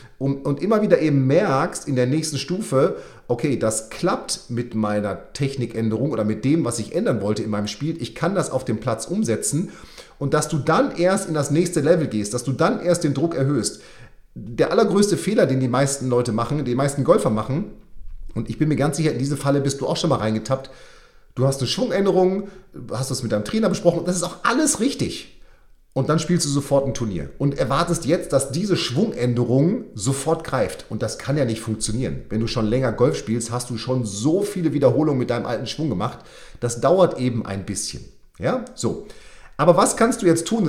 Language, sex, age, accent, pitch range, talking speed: German, male, 30-49, German, 125-165 Hz, 210 wpm